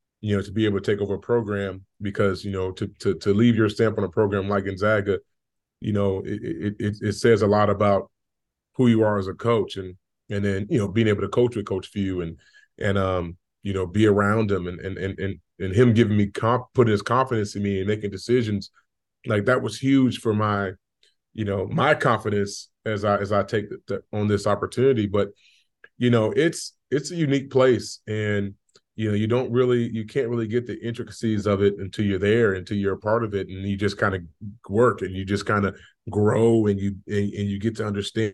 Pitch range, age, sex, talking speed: 100-115 Hz, 30-49, male, 230 wpm